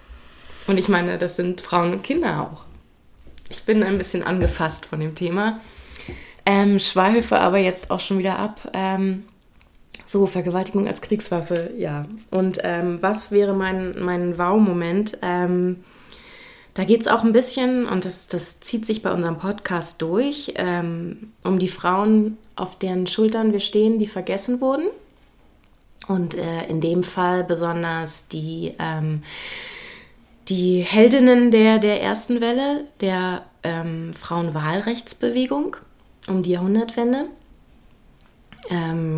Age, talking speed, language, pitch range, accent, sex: 20-39, 130 wpm, German, 170-220 Hz, German, female